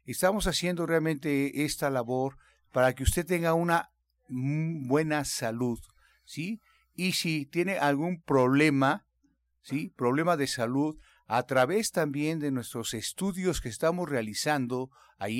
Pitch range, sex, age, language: 130-170 Hz, male, 50-69, Spanish